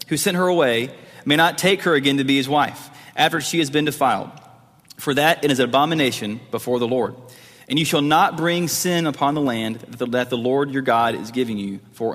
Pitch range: 125-165 Hz